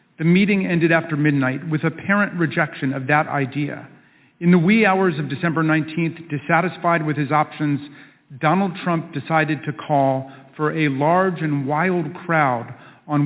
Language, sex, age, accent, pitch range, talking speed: English, male, 50-69, American, 140-170 Hz, 155 wpm